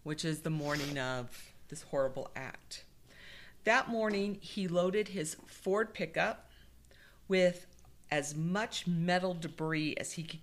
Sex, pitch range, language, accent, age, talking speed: female, 145-195 Hz, English, American, 50-69, 130 wpm